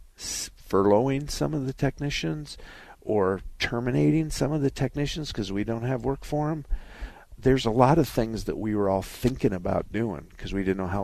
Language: English